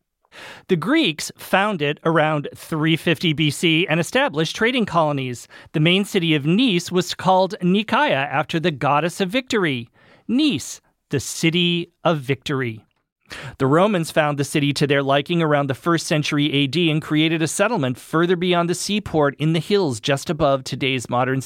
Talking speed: 160 wpm